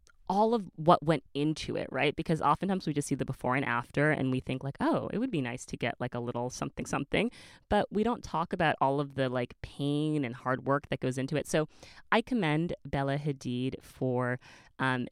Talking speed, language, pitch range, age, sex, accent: 220 wpm, English, 130-165 Hz, 20-39, female, American